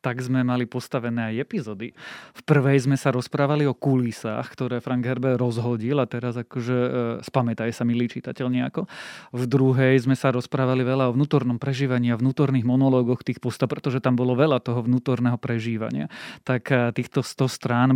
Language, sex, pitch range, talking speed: Slovak, male, 125-140 Hz, 170 wpm